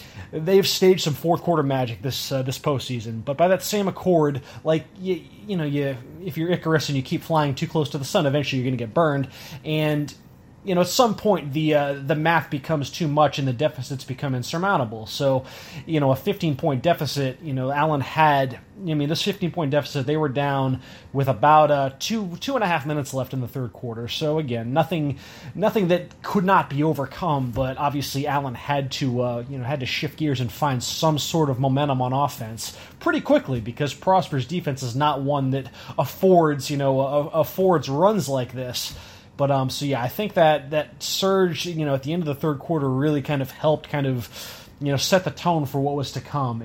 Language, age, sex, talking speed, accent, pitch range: English, 20-39, male, 215 wpm, American, 130-160 Hz